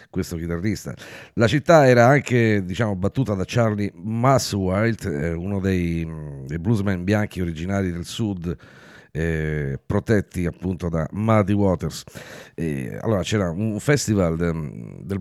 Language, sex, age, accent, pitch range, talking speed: Italian, male, 50-69, native, 80-105 Hz, 125 wpm